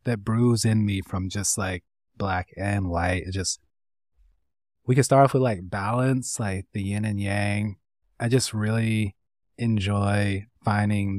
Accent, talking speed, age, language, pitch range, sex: American, 155 wpm, 20-39, English, 95-120 Hz, male